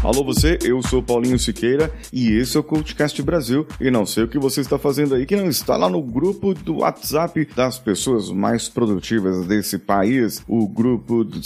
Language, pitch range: Portuguese, 110-165 Hz